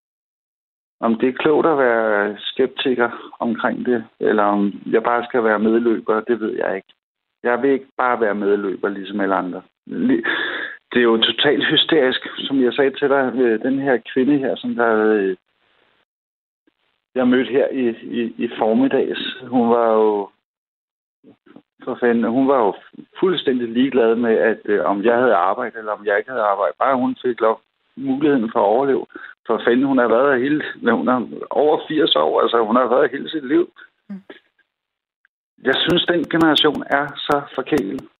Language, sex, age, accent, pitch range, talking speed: Danish, male, 60-79, native, 115-155 Hz, 170 wpm